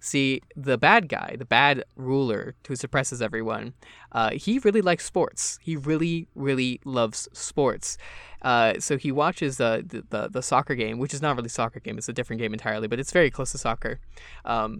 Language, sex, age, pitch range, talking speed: English, male, 20-39, 115-145 Hz, 200 wpm